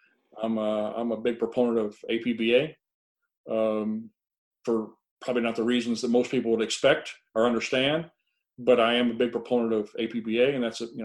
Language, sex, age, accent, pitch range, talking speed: English, male, 40-59, American, 115-135 Hz, 180 wpm